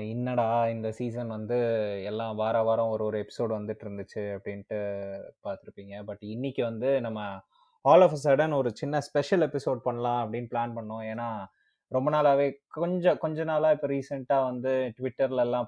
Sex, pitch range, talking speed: male, 110-135 Hz, 150 wpm